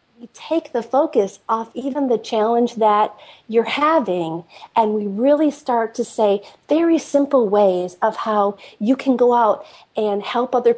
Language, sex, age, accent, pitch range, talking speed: English, female, 40-59, American, 215-270 Hz, 155 wpm